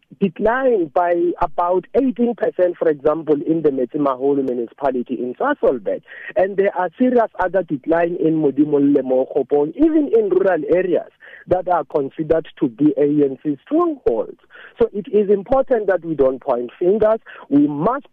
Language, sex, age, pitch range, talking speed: English, male, 50-69, 160-245 Hz, 145 wpm